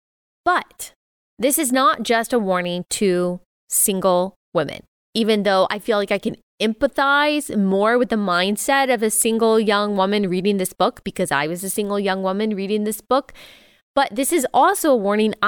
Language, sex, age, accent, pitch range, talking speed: English, female, 20-39, American, 195-250 Hz, 180 wpm